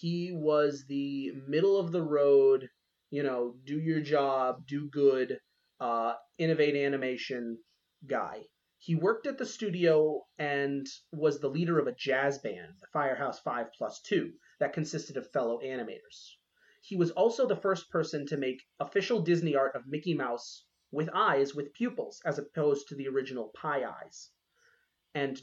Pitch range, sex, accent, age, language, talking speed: 135-185 Hz, male, American, 30-49, English, 145 wpm